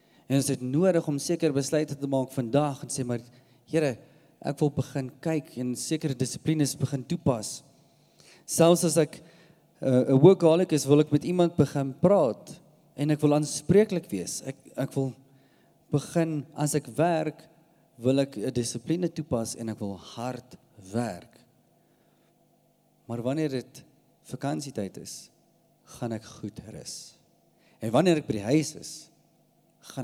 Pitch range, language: 120-155 Hz, English